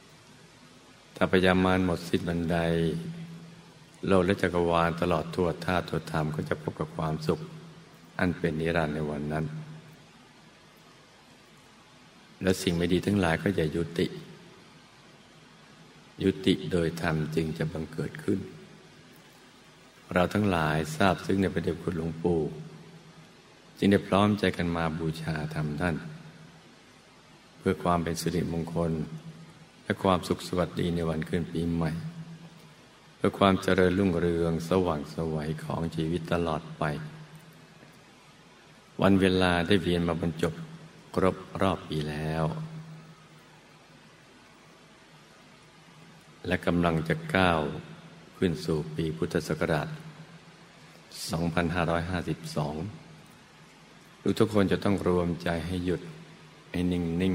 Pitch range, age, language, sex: 80-100 Hz, 60-79, Thai, male